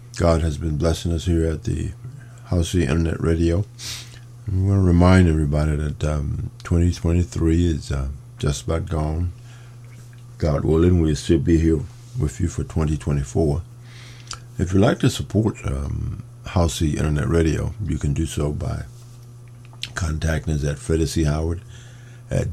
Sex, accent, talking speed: male, American, 145 wpm